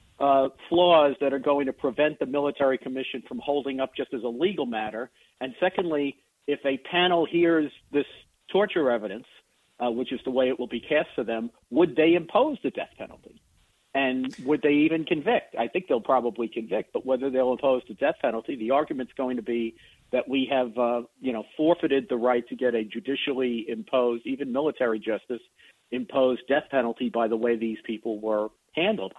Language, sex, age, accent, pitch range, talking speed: English, male, 50-69, American, 125-145 Hz, 190 wpm